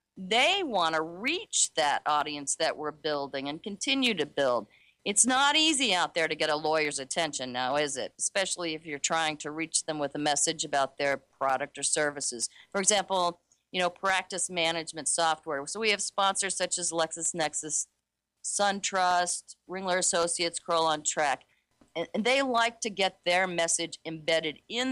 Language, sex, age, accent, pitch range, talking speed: English, female, 40-59, American, 155-200 Hz, 170 wpm